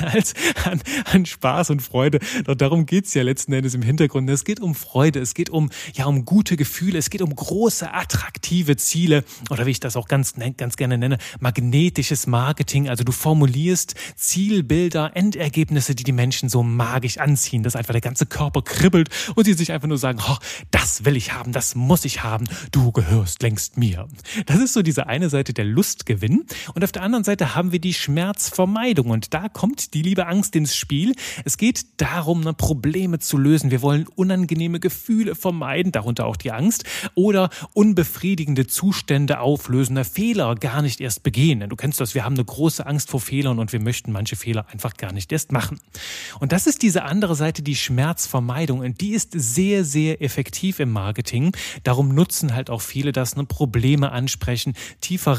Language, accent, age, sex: German, German, 30-49, male